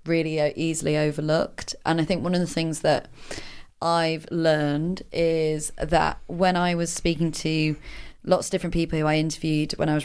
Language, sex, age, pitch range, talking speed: English, female, 20-39, 155-175 Hz, 180 wpm